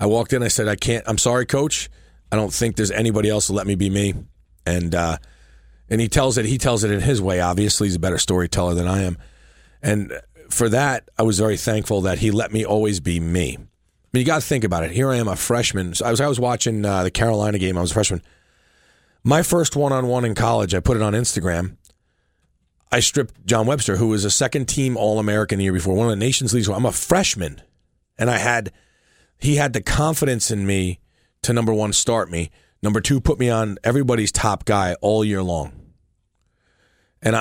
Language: English